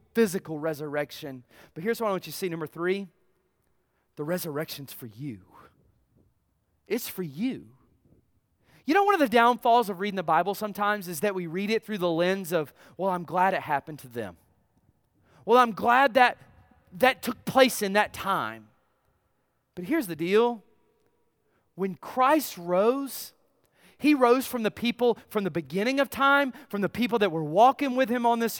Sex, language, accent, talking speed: male, English, American, 175 wpm